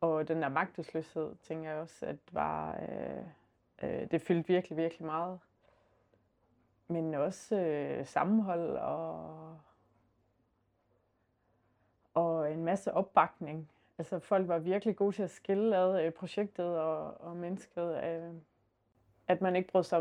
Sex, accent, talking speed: female, native, 130 wpm